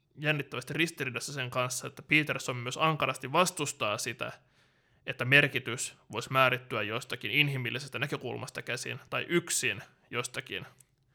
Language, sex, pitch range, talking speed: Finnish, male, 125-145 Hz, 115 wpm